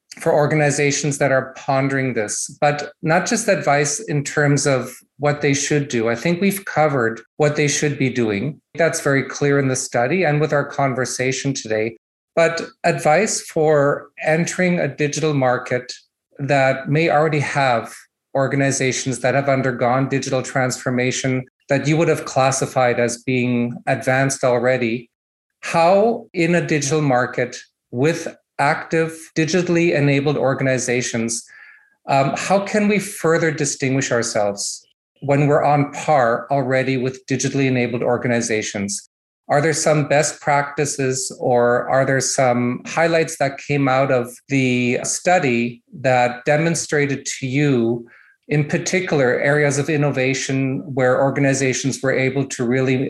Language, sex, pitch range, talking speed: English, male, 125-150 Hz, 135 wpm